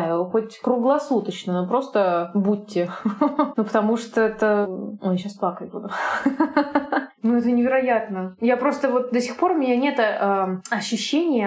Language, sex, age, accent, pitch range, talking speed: Russian, female, 20-39, native, 200-260 Hz, 135 wpm